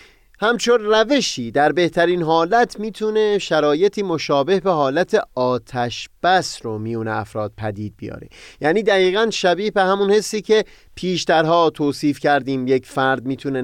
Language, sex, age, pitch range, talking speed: Persian, male, 30-49, 125-185 Hz, 130 wpm